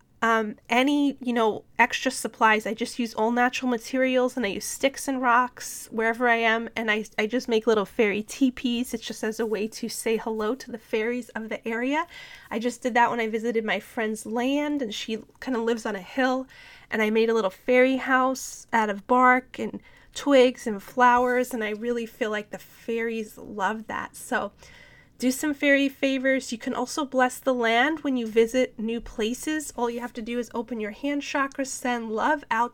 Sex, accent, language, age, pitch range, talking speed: female, American, English, 20-39, 225-265 Hz, 205 wpm